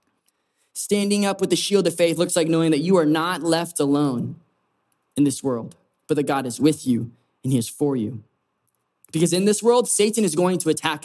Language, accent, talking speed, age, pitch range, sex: English, American, 210 wpm, 20-39, 140-180 Hz, male